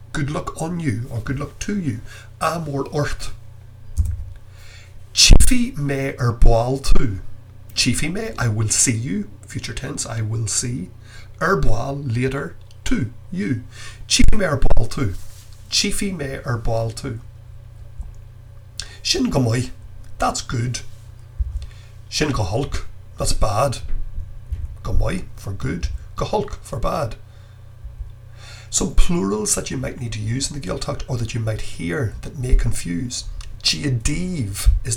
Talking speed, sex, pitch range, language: 130 wpm, male, 105-130 Hz, English